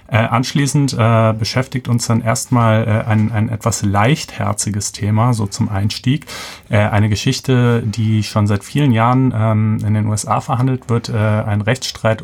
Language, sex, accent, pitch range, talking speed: German, male, German, 100-115 Hz, 155 wpm